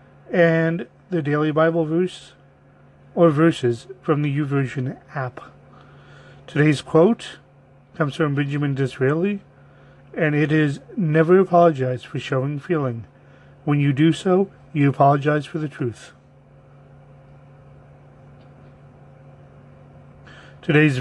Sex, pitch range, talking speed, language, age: male, 135-160 Hz, 105 wpm, English, 40-59